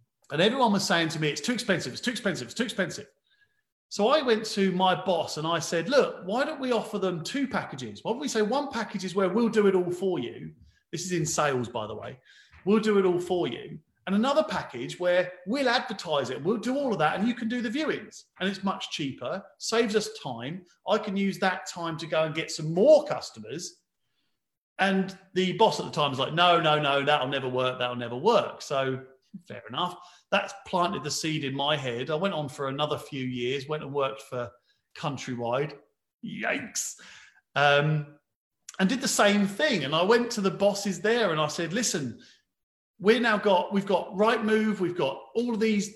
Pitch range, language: 145-205 Hz, English